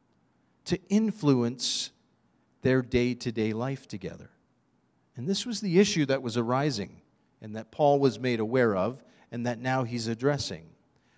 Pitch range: 130-200 Hz